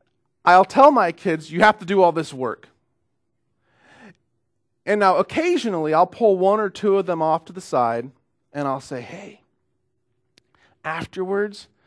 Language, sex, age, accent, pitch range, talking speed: English, male, 40-59, American, 140-225 Hz, 150 wpm